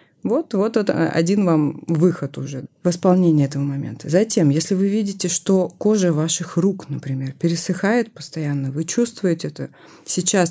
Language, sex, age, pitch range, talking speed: Russian, female, 30-49, 145-185 Hz, 150 wpm